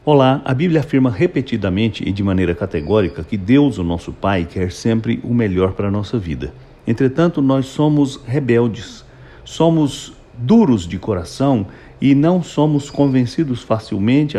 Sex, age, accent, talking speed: male, 60-79, Brazilian, 145 wpm